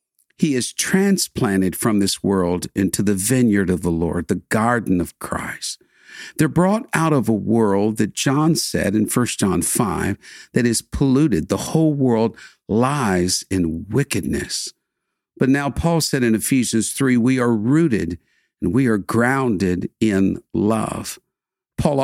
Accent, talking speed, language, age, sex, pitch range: American, 150 wpm, English, 50-69, male, 95-135 Hz